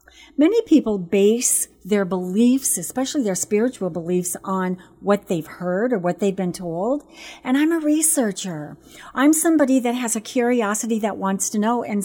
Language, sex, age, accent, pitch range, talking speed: English, female, 40-59, American, 190-260 Hz, 165 wpm